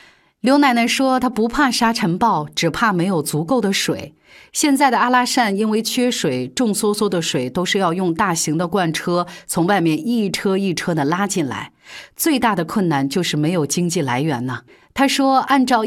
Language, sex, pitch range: Chinese, female, 165-235 Hz